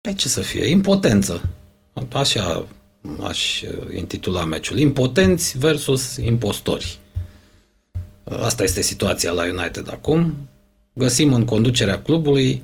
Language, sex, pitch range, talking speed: Romanian, male, 100-145 Hz, 105 wpm